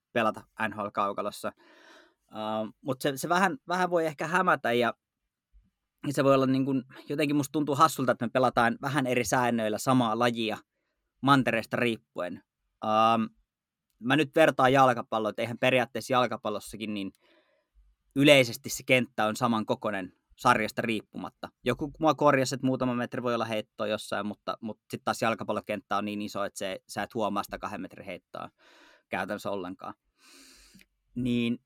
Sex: male